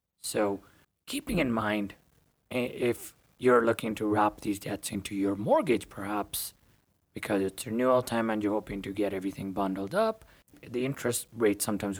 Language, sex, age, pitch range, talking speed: English, male, 30-49, 100-115 Hz, 155 wpm